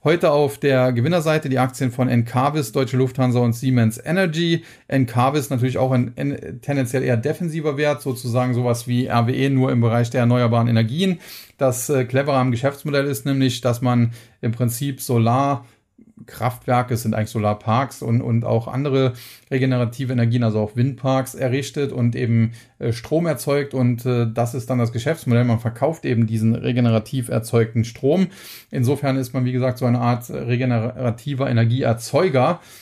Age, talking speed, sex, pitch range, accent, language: 40-59, 155 wpm, male, 120-140 Hz, German, German